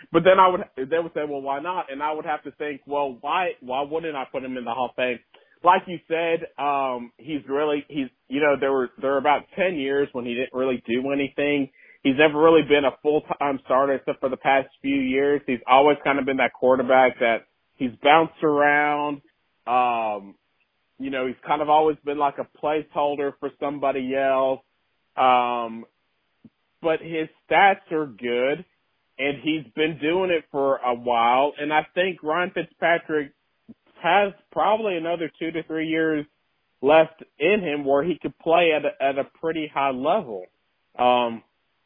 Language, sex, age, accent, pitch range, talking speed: English, male, 30-49, American, 130-155 Hz, 185 wpm